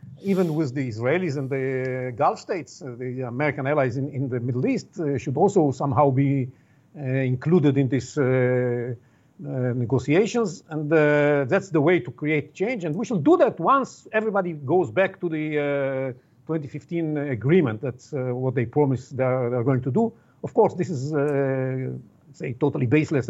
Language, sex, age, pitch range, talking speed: English, male, 50-69, 135-165 Hz, 180 wpm